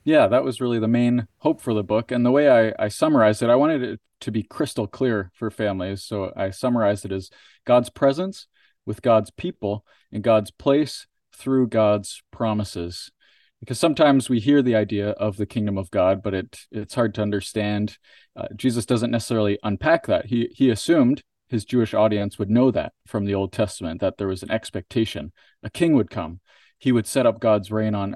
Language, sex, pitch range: English, male, 100-120 Hz